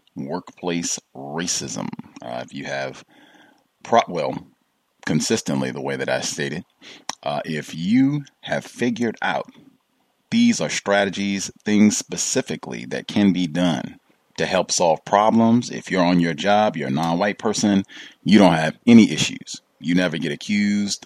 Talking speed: 150 wpm